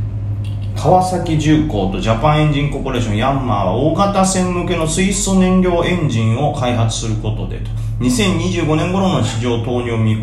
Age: 30-49